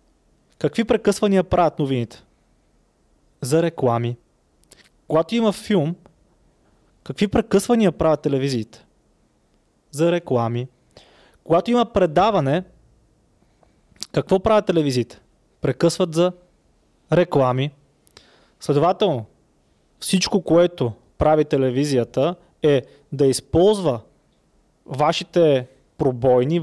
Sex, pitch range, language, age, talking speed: male, 130-170 Hz, Bulgarian, 20-39, 75 wpm